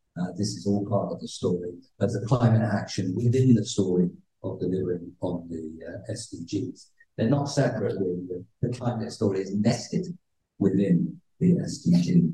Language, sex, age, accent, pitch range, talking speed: English, male, 50-69, British, 105-150 Hz, 165 wpm